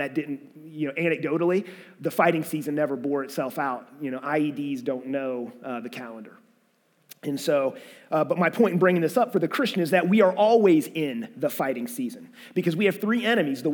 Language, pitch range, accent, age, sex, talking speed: English, 165-245 Hz, American, 30-49, male, 210 wpm